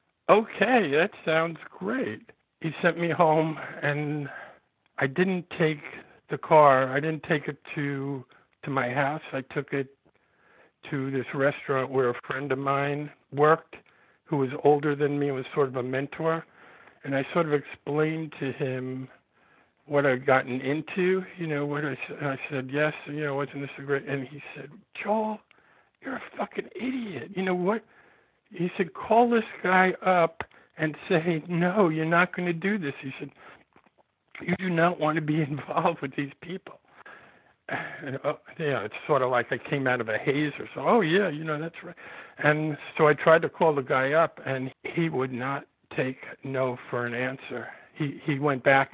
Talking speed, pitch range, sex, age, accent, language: 185 wpm, 135-165 Hz, male, 60-79, American, English